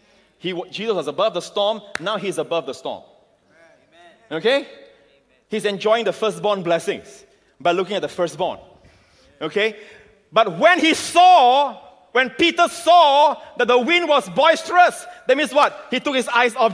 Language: English